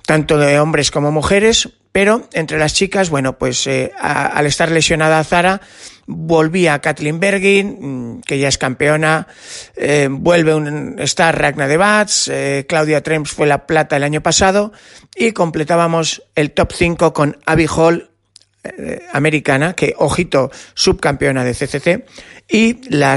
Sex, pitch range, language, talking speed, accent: male, 135-185 Hz, Spanish, 150 wpm, Spanish